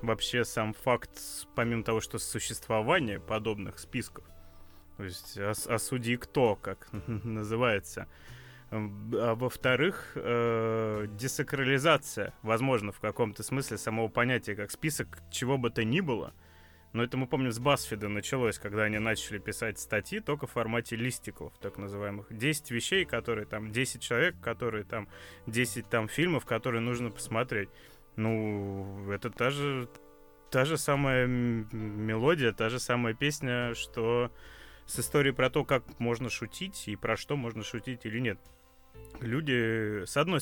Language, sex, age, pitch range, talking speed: Russian, male, 20-39, 105-125 Hz, 140 wpm